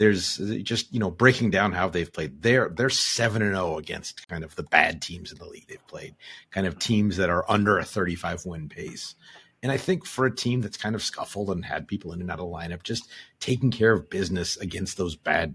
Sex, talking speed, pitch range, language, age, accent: male, 245 wpm, 90-110 Hz, English, 30-49, American